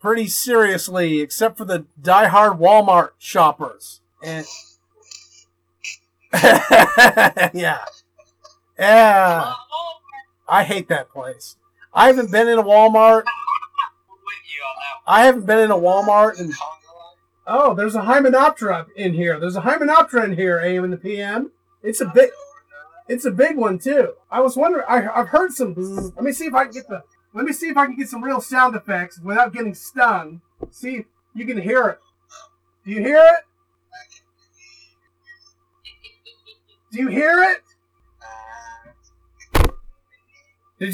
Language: English